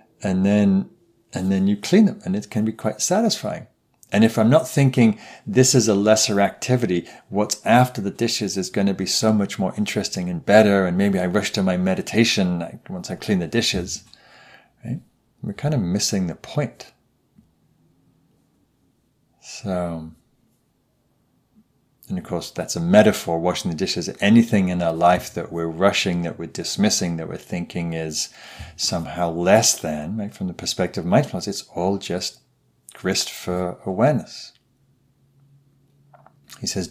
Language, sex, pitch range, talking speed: English, male, 90-120 Hz, 160 wpm